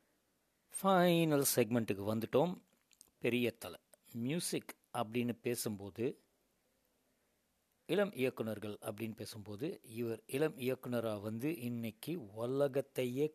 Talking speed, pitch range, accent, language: 80 wpm, 110-135 Hz, native, Tamil